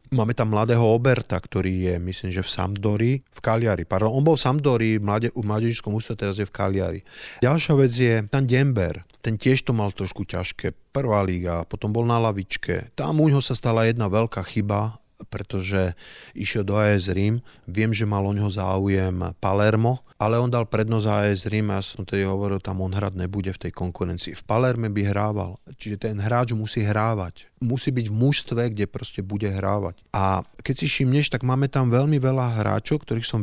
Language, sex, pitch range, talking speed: Slovak, male, 100-120 Hz, 195 wpm